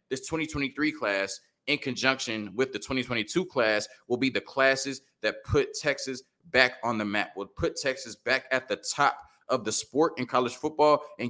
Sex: male